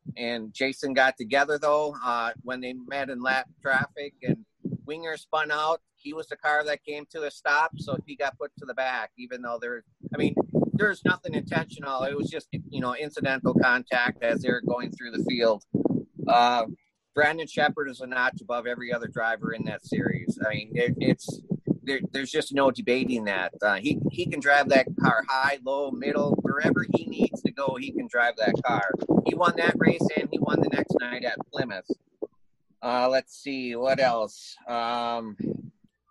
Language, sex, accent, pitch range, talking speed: English, male, American, 125-155 Hz, 190 wpm